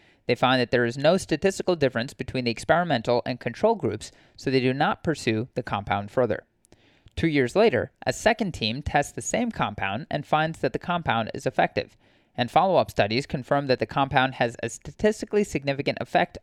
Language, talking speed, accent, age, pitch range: English, 185 wpm, American, 30-49, 115-160 Hz